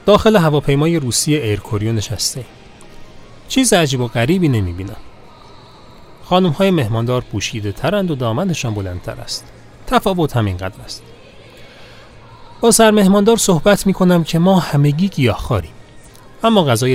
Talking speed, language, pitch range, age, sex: 115 wpm, Persian, 105-160 Hz, 30-49, male